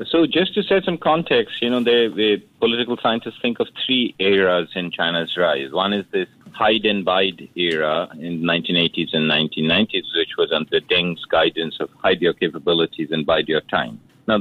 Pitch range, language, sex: 95-125 Hz, English, male